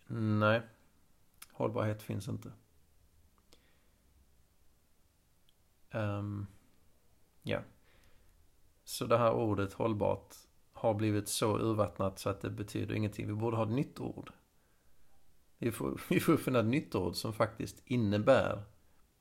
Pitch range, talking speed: 95-110 Hz, 110 wpm